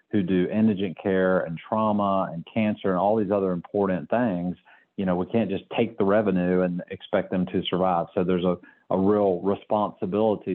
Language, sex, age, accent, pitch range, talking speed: English, male, 40-59, American, 90-100 Hz, 190 wpm